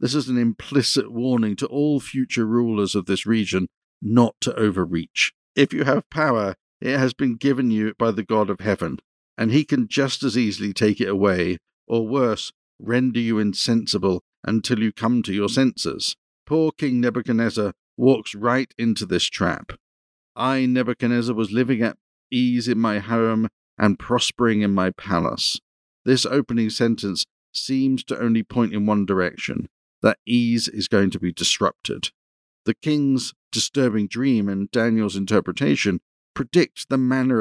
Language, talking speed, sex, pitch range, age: English, 155 wpm, male, 100-125 Hz, 50-69